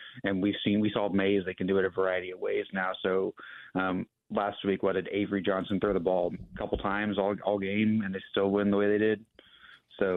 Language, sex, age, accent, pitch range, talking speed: English, male, 30-49, American, 95-105 Hz, 240 wpm